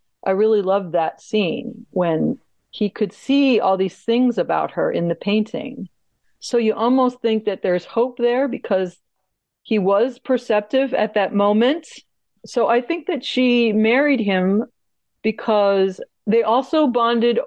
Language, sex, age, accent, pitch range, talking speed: English, female, 40-59, American, 185-240 Hz, 150 wpm